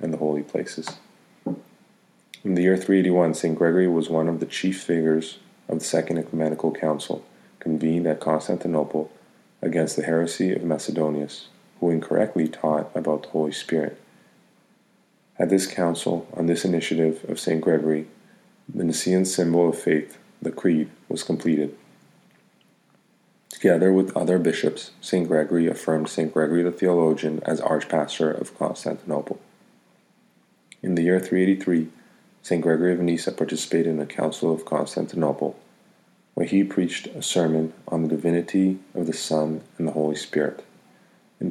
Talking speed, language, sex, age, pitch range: 140 wpm, English, male, 30-49, 80-85 Hz